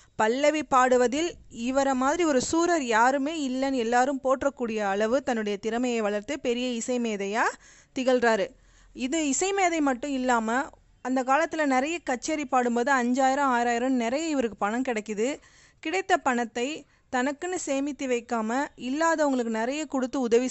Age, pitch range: 20-39, 240-290 Hz